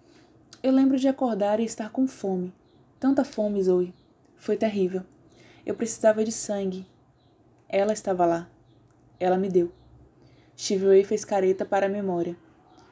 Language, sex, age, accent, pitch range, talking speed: Portuguese, female, 20-39, Brazilian, 190-235 Hz, 135 wpm